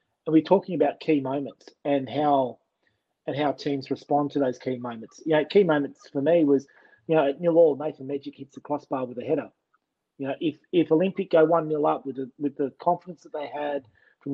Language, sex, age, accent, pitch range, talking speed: English, male, 30-49, Australian, 140-160 Hz, 220 wpm